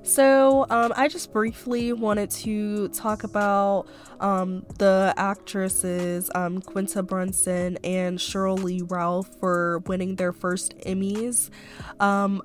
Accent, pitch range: American, 175-195 Hz